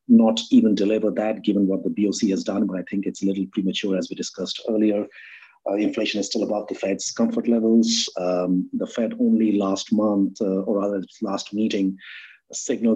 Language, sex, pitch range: English, male, 95-115 Hz